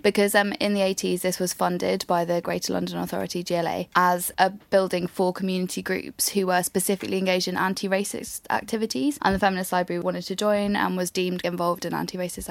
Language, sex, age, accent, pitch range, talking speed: English, female, 10-29, British, 180-200 Hz, 190 wpm